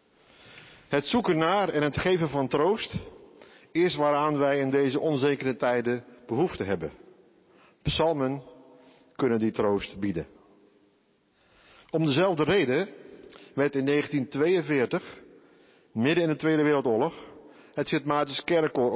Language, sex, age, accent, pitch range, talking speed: Dutch, male, 50-69, Dutch, 125-155 Hz, 115 wpm